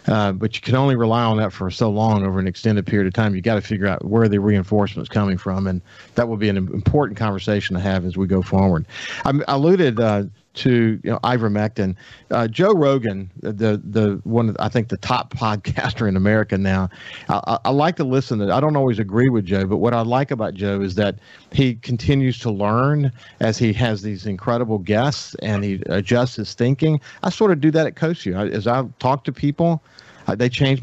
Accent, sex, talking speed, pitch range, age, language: American, male, 220 wpm, 105-135 Hz, 50-69, English